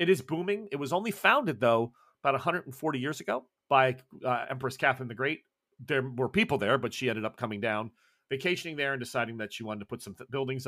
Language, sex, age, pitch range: English, male, 40-59, 120-160 Hz